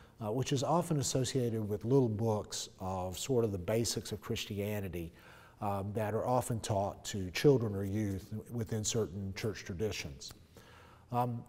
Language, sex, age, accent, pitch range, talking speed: English, male, 50-69, American, 100-140 Hz, 150 wpm